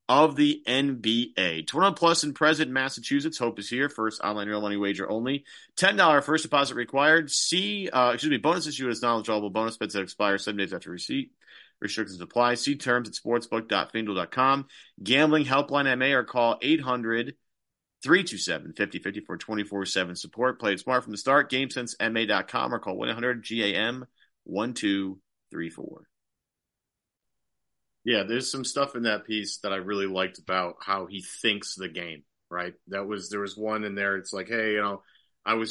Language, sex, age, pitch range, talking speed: English, male, 40-59, 95-125 Hz, 160 wpm